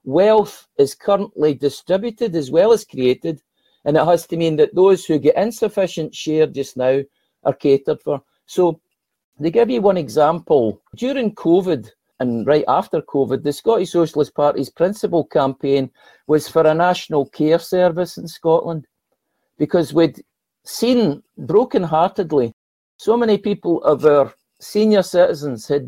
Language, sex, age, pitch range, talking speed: English, male, 60-79, 145-195 Hz, 145 wpm